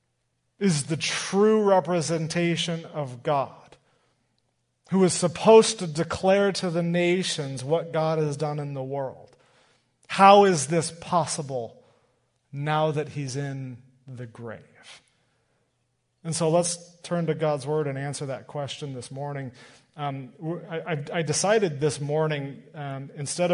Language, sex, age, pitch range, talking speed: English, male, 40-59, 135-170 Hz, 135 wpm